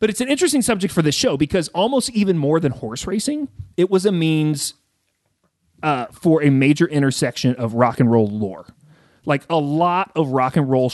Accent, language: American, English